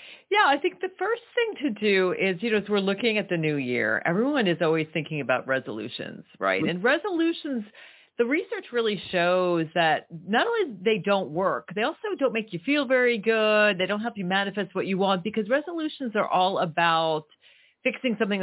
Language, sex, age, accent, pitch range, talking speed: English, female, 40-59, American, 180-245 Hz, 195 wpm